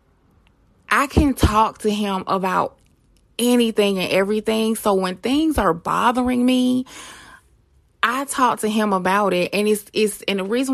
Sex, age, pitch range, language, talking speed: female, 20-39, 180-220 Hz, English, 150 wpm